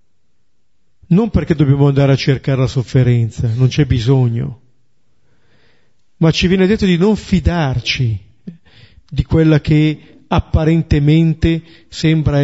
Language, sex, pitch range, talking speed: Italian, male, 130-160 Hz, 110 wpm